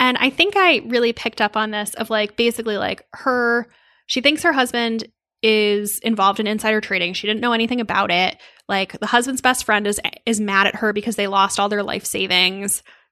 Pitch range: 205-245 Hz